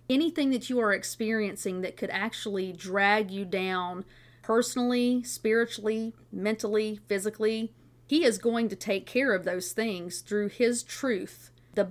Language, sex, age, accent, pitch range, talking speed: English, female, 40-59, American, 185-225 Hz, 140 wpm